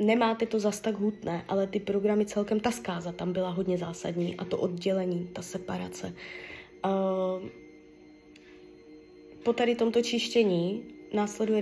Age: 20-39